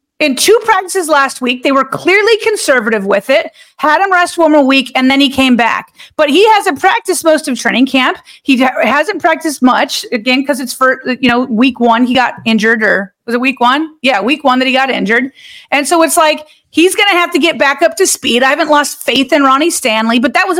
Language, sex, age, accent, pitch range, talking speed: English, female, 30-49, American, 250-345 Hz, 235 wpm